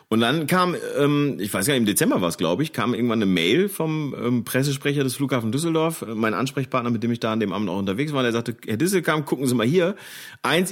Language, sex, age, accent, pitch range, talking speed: German, male, 40-59, German, 100-140 Hz, 240 wpm